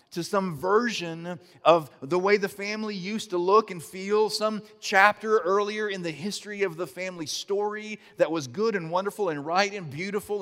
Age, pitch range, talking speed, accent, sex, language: 40-59, 140-190 Hz, 185 wpm, American, male, English